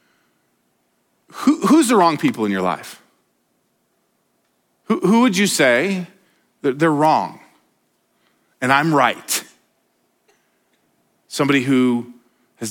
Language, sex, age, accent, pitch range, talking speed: English, male, 40-59, American, 135-180 Hz, 95 wpm